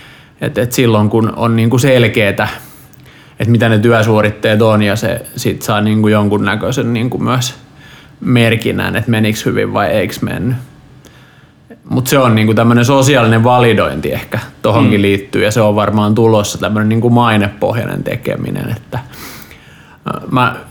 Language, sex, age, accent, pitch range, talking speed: Finnish, male, 20-39, native, 110-135 Hz, 140 wpm